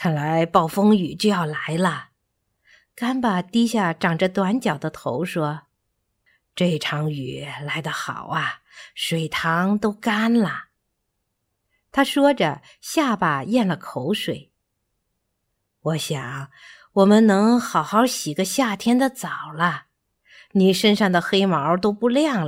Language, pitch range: Chinese, 160-250 Hz